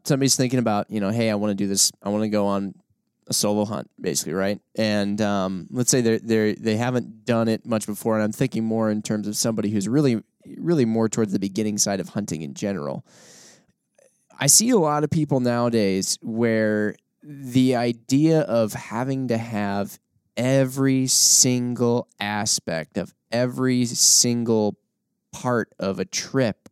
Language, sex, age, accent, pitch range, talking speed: English, male, 20-39, American, 105-130 Hz, 175 wpm